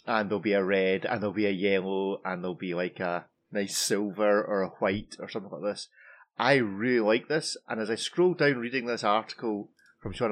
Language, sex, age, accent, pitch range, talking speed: English, male, 30-49, British, 100-120 Hz, 220 wpm